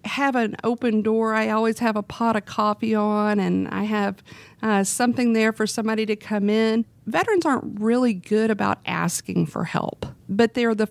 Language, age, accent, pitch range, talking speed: English, 50-69, American, 200-230 Hz, 185 wpm